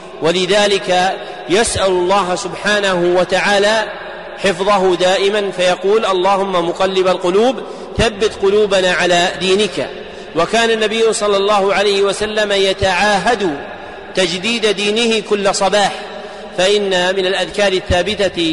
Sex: male